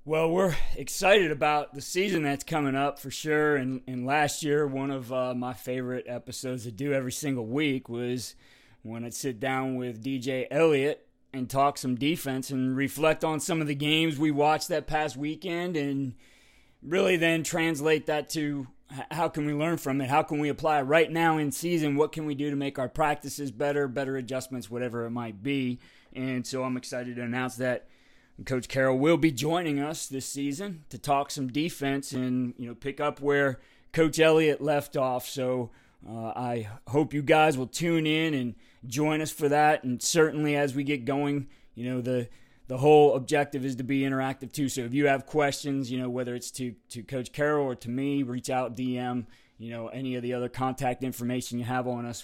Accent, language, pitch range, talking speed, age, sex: American, English, 125-150 Hz, 200 wpm, 20-39, male